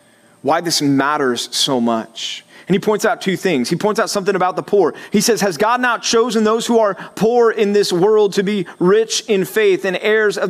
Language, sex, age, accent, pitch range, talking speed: English, male, 30-49, American, 160-210 Hz, 225 wpm